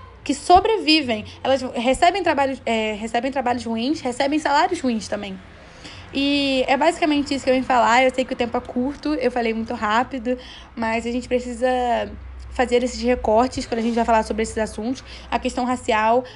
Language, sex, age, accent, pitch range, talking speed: Portuguese, female, 10-29, Brazilian, 230-270 Hz, 175 wpm